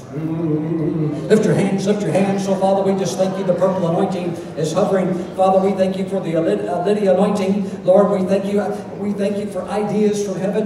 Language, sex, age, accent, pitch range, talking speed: English, male, 60-79, American, 195-225 Hz, 205 wpm